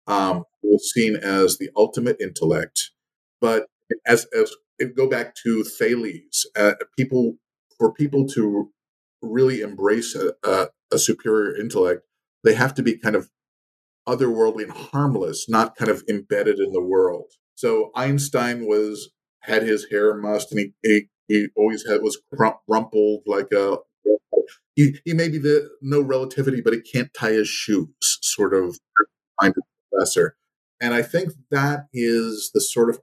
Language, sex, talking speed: English, male, 145 wpm